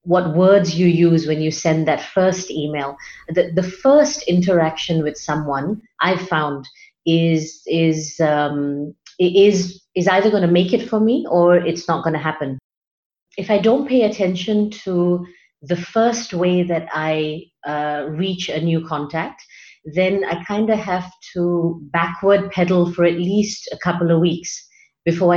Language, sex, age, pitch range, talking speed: English, female, 30-49, 160-190 Hz, 165 wpm